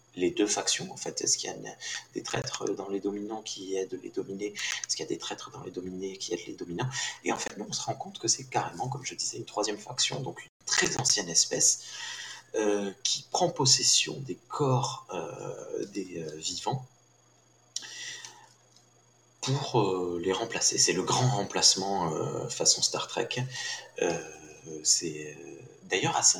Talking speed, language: 180 wpm, French